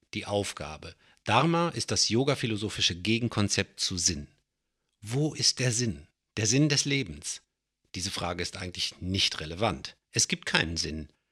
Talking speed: 145 wpm